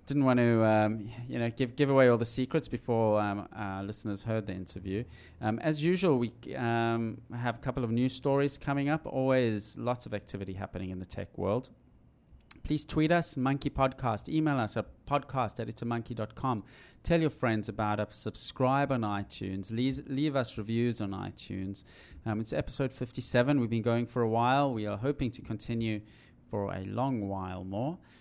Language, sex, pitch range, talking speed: English, male, 105-135 Hz, 180 wpm